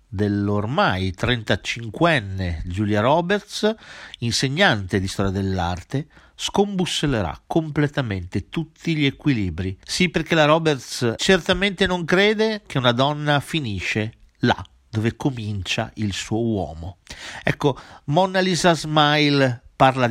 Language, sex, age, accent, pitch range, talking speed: Italian, male, 50-69, native, 100-150 Hz, 105 wpm